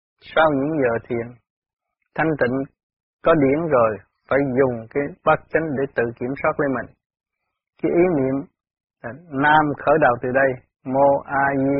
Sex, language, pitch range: male, Vietnamese, 125-145 Hz